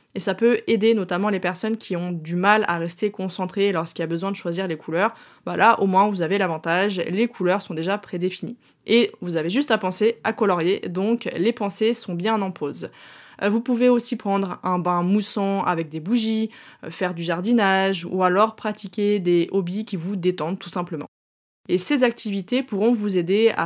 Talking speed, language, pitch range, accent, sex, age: 200 wpm, French, 180-225 Hz, French, female, 20-39